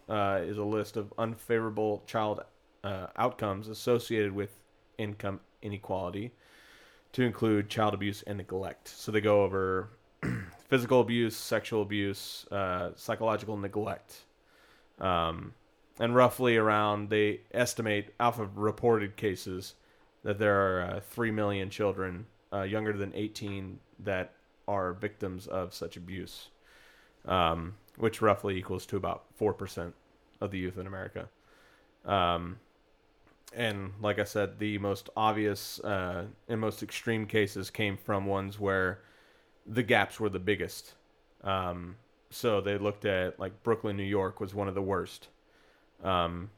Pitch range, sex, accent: 95-110 Hz, male, American